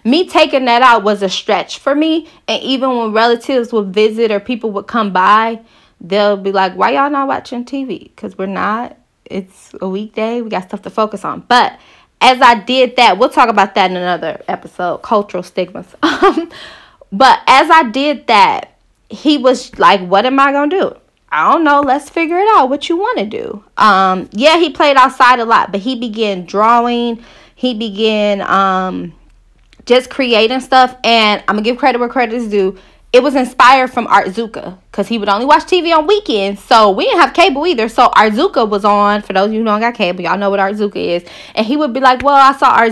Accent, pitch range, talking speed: American, 205-260 Hz, 210 wpm